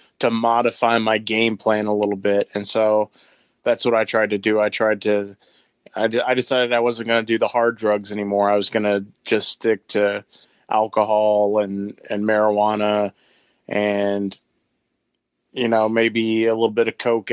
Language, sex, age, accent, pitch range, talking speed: English, male, 20-39, American, 105-120 Hz, 175 wpm